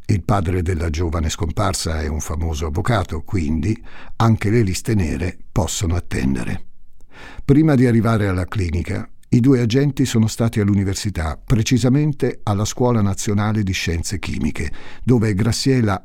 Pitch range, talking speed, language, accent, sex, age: 85-120 Hz, 135 wpm, Italian, native, male, 50-69